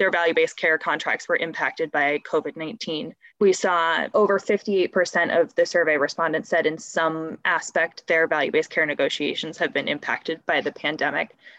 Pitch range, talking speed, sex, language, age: 160-195 Hz, 155 wpm, female, English, 20-39